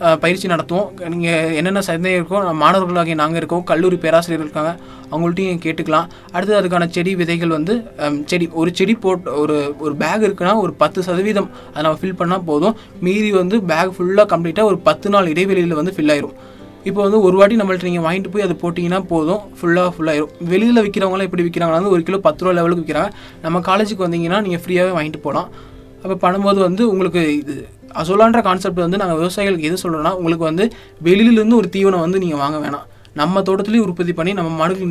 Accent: native